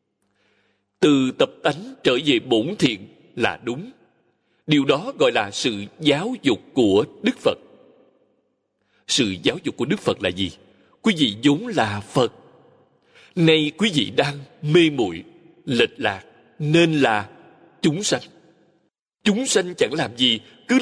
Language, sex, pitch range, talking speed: Vietnamese, male, 120-185 Hz, 145 wpm